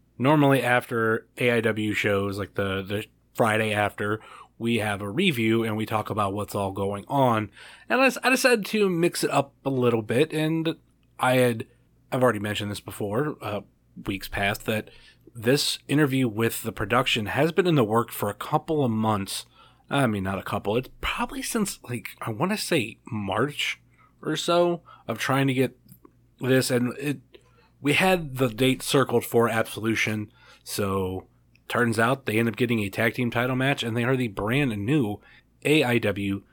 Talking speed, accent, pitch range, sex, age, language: 175 wpm, American, 105-140 Hz, male, 30-49, English